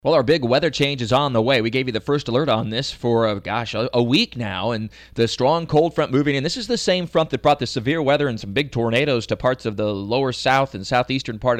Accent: American